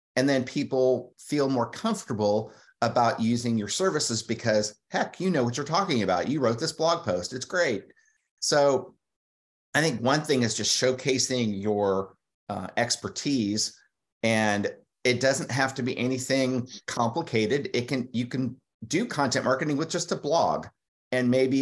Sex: male